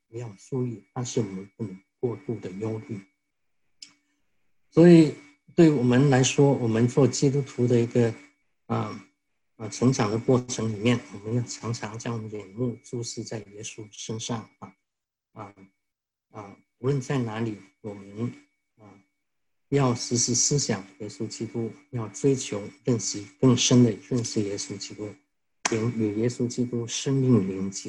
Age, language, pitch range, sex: 50-69, English, 105-130 Hz, male